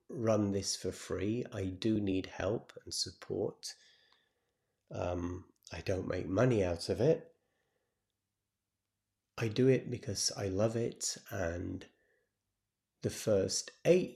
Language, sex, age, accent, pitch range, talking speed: English, male, 30-49, British, 95-120 Hz, 125 wpm